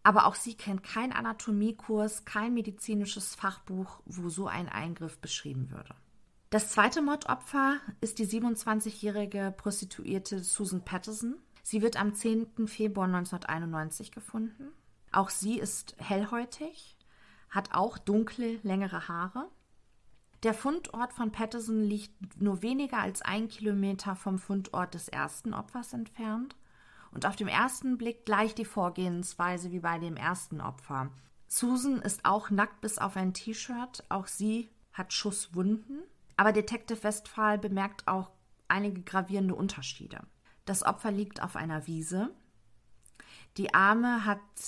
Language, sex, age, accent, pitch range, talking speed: German, female, 40-59, German, 190-225 Hz, 130 wpm